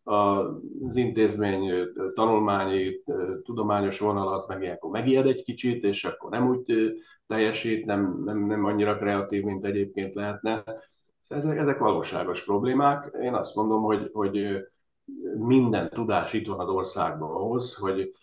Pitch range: 100-125 Hz